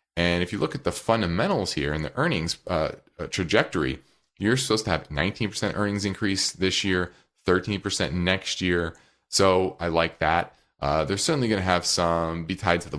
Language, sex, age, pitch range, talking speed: English, male, 30-49, 80-110 Hz, 185 wpm